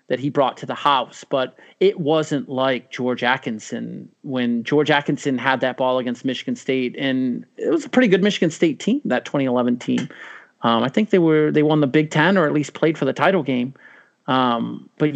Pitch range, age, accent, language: 130-165 Hz, 30-49, American, English